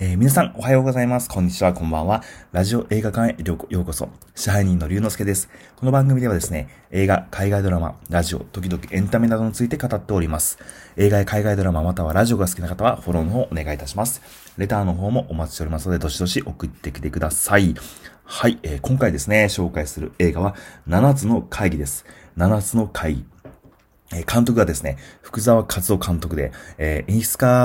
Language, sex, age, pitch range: Japanese, male, 30-49, 85-110 Hz